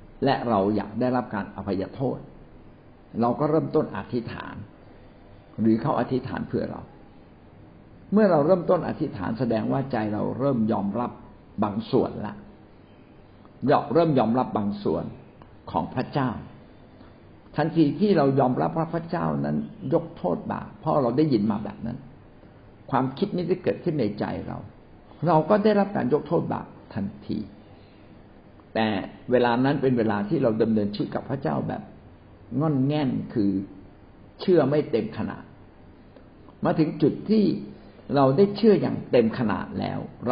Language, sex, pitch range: Thai, male, 105-150 Hz